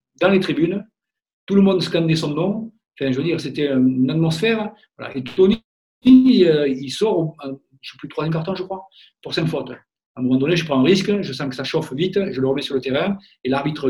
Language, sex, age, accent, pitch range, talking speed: French, male, 50-69, French, 135-200 Hz, 235 wpm